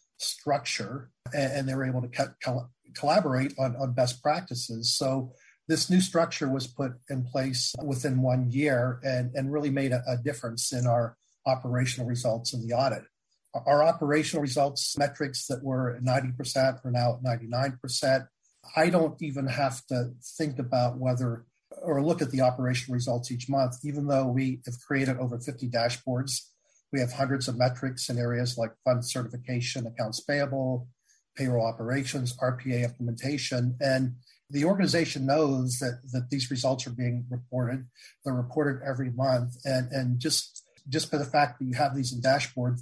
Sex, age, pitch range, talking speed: male, 40-59, 125-140 Hz, 165 wpm